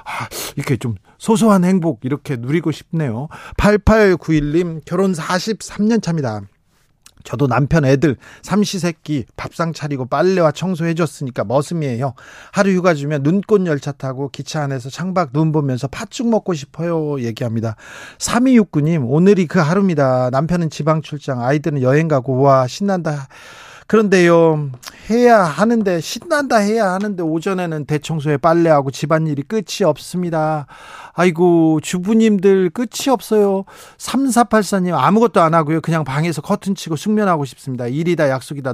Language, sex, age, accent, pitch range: Korean, male, 40-59, native, 145-200 Hz